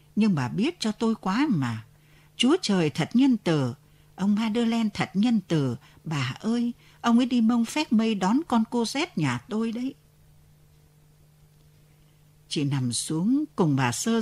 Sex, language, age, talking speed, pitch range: female, Vietnamese, 60-79, 160 wpm, 150-225 Hz